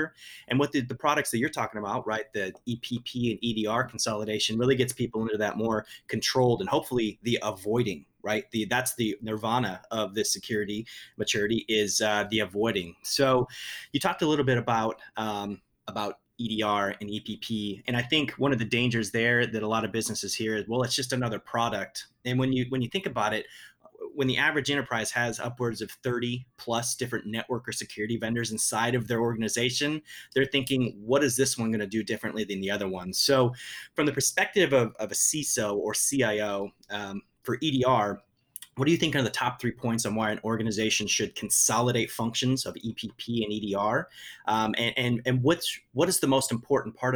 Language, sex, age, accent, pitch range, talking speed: English, male, 30-49, American, 110-125 Hz, 195 wpm